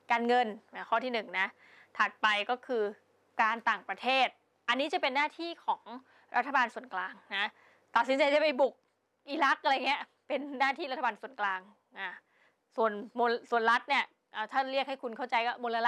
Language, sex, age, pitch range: Thai, female, 20-39, 220-275 Hz